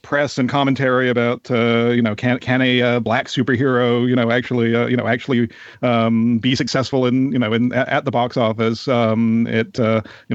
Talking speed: 205 wpm